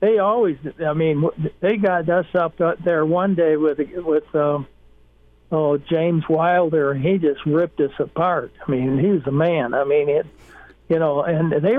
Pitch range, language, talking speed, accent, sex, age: 150-180 Hz, English, 185 wpm, American, male, 60-79